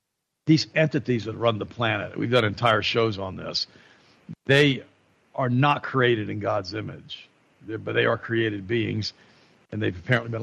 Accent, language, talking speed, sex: American, English, 160 wpm, male